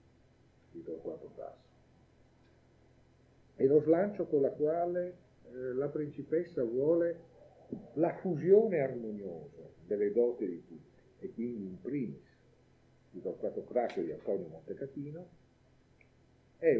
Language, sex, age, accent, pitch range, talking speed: Italian, male, 50-69, native, 120-175 Hz, 115 wpm